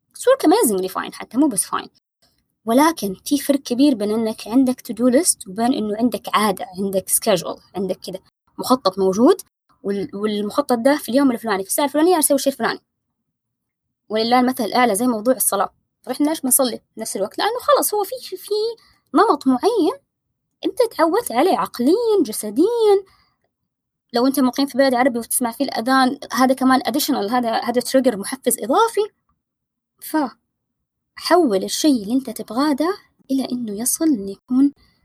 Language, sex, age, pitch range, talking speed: Arabic, female, 20-39, 220-285 Hz, 155 wpm